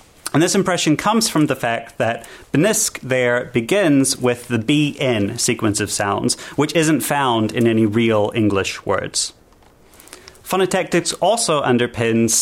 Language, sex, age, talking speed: English, male, 30-49, 135 wpm